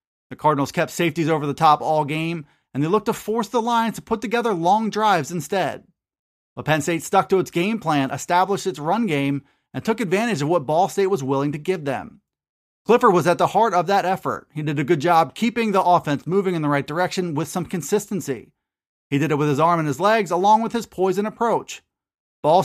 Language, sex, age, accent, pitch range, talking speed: English, male, 30-49, American, 150-205 Hz, 225 wpm